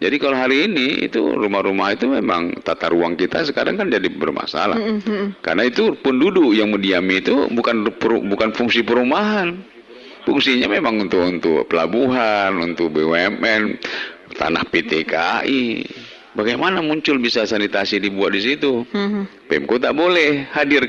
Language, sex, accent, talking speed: Indonesian, male, native, 130 wpm